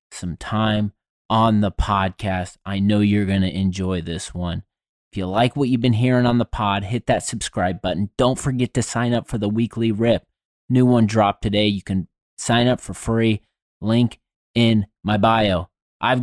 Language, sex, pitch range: English, male, 105-135 Hz